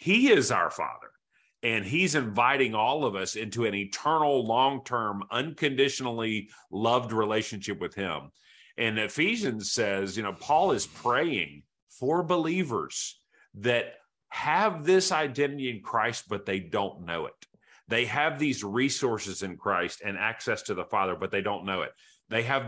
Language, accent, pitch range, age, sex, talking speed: English, American, 105-145 Hz, 40-59, male, 155 wpm